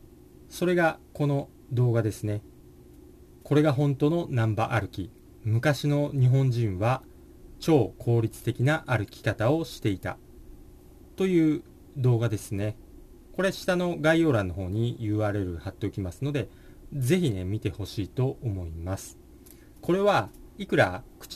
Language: Japanese